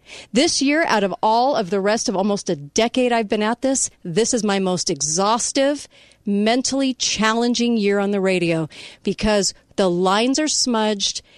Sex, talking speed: female, 170 wpm